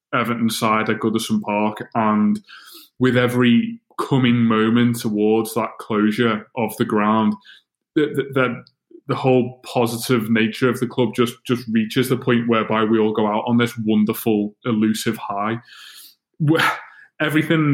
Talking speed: 140 wpm